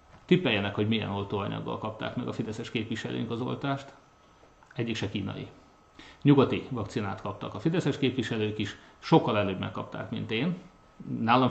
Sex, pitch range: male, 105-145 Hz